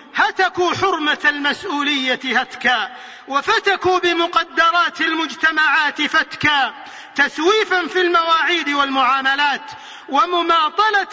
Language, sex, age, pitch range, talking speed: Arabic, male, 40-59, 275-365 Hz, 70 wpm